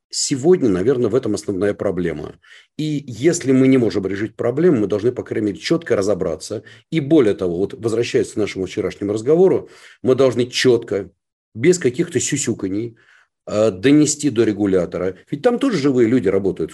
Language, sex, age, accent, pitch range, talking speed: Russian, male, 40-59, native, 105-150 Hz, 160 wpm